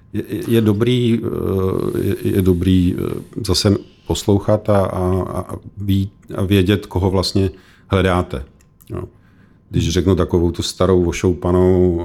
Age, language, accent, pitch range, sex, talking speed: 50-69, Czech, native, 85-95 Hz, male, 95 wpm